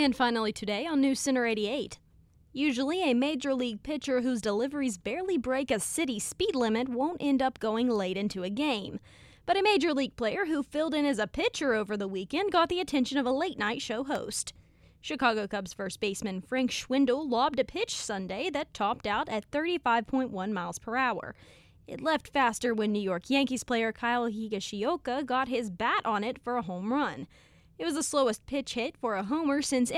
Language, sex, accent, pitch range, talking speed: English, female, American, 215-290 Hz, 195 wpm